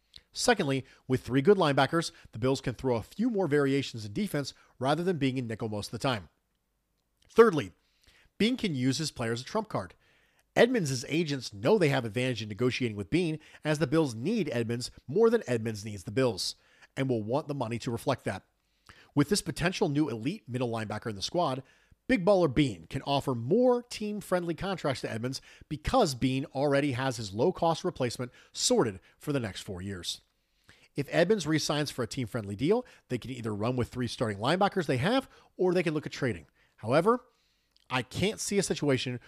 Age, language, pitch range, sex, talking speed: 40-59, English, 120-170 Hz, male, 190 wpm